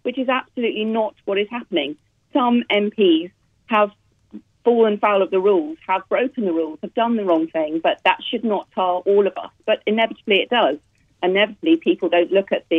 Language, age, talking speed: English, 40-59, 195 wpm